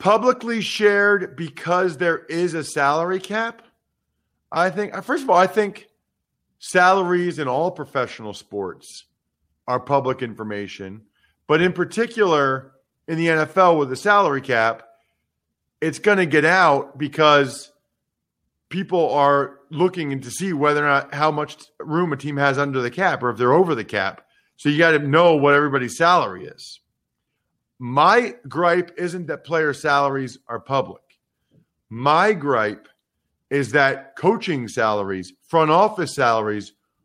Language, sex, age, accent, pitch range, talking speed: English, male, 40-59, American, 130-180 Hz, 145 wpm